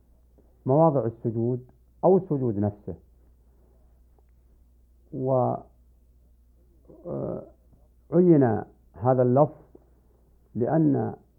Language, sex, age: Arabic, male, 50-69